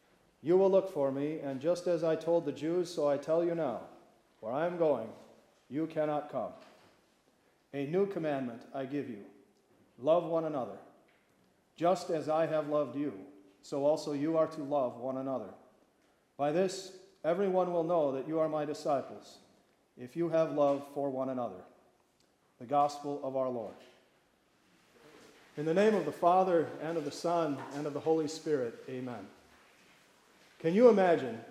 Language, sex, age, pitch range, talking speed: English, male, 40-59, 140-170 Hz, 170 wpm